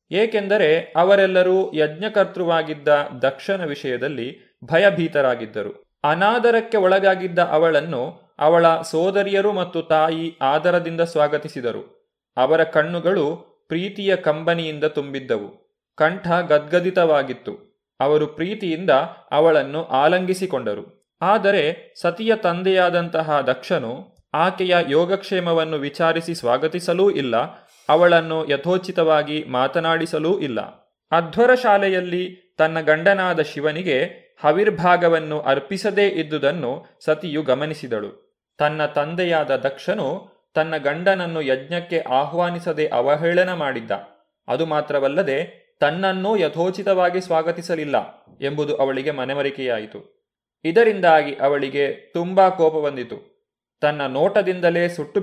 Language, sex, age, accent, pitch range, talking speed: Kannada, male, 30-49, native, 150-185 Hz, 80 wpm